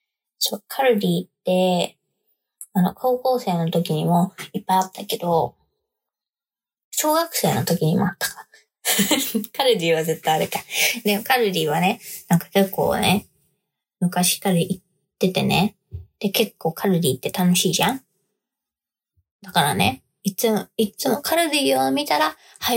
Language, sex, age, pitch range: Japanese, female, 20-39, 180-225 Hz